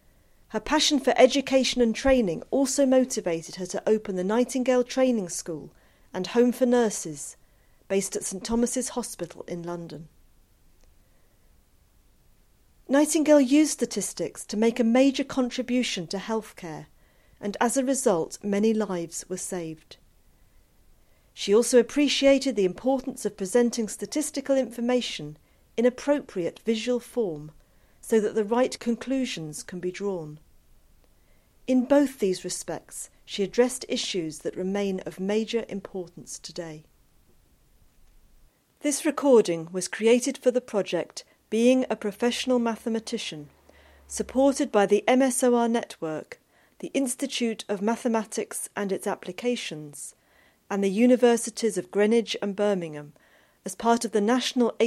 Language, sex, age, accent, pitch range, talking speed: English, female, 40-59, British, 185-250 Hz, 125 wpm